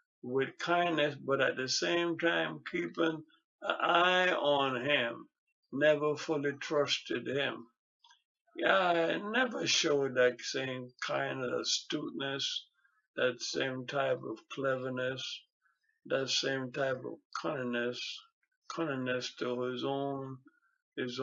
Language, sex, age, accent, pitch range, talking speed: English, male, 60-79, American, 125-175 Hz, 115 wpm